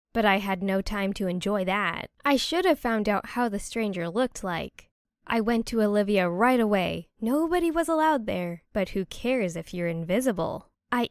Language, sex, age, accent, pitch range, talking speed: English, female, 10-29, American, 200-260 Hz, 190 wpm